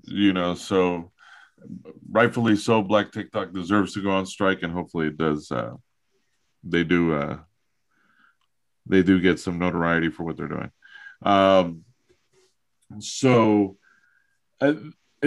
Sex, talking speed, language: male, 125 wpm, English